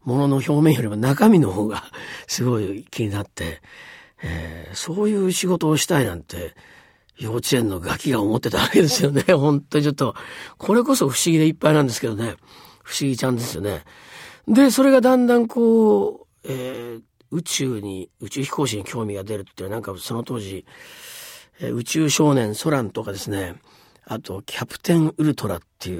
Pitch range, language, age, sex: 100-155 Hz, Japanese, 50-69, male